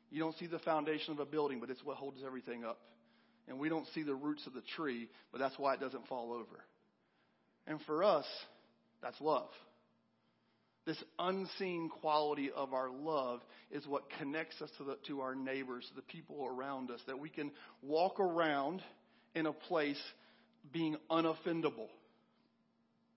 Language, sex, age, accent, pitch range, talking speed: English, male, 40-59, American, 130-170 Hz, 165 wpm